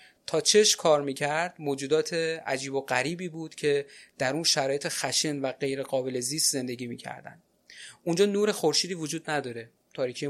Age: 30-49